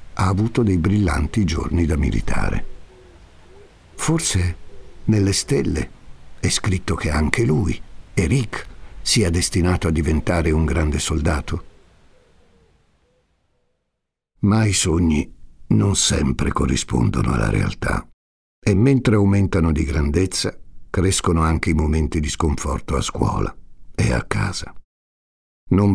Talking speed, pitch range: 110 wpm, 75-105 Hz